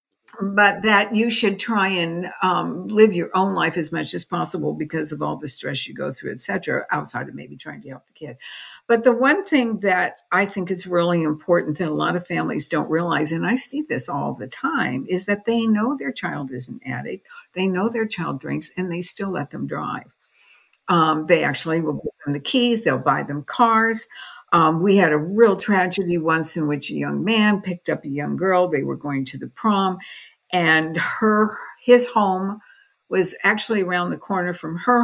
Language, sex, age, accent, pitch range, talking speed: English, female, 60-79, American, 170-215 Hz, 210 wpm